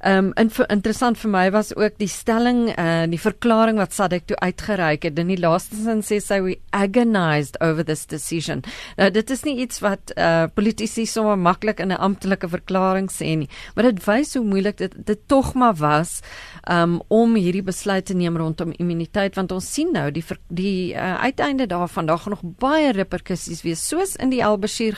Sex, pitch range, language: female, 160-215 Hz, Dutch